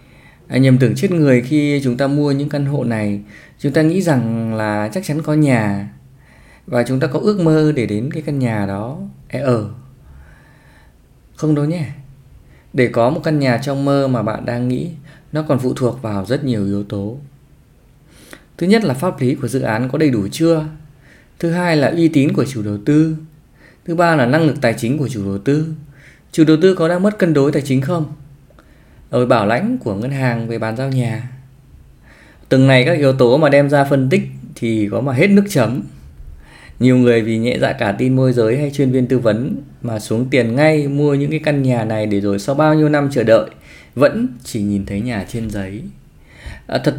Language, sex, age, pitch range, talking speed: Vietnamese, male, 20-39, 115-155 Hz, 215 wpm